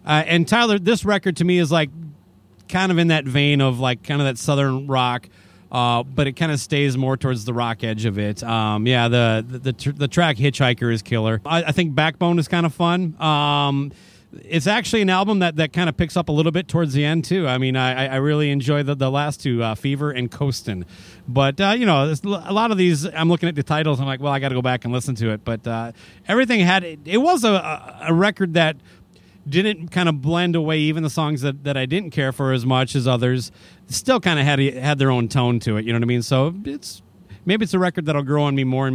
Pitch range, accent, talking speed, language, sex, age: 120-165 Hz, American, 255 wpm, English, male, 30-49